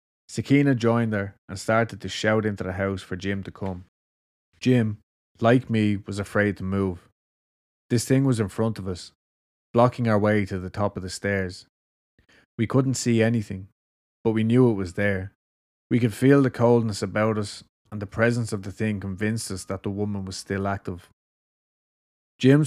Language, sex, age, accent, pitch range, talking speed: English, male, 20-39, Irish, 95-115 Hz, 185 wpm